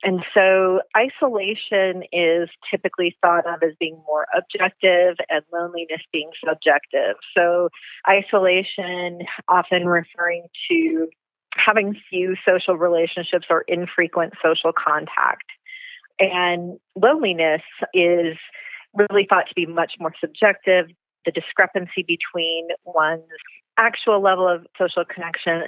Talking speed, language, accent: 110 wpm, English, American